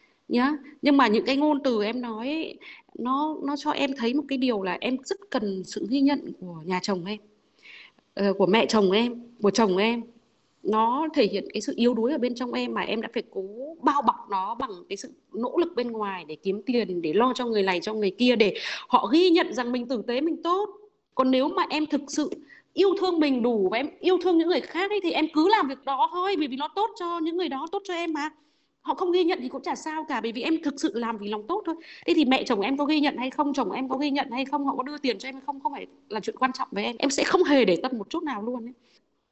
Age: 20-39